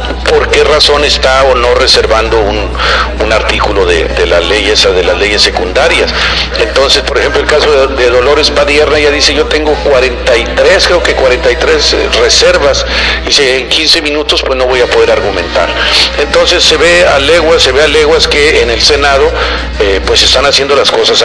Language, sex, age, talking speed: English, male, 50-69, 185 wpm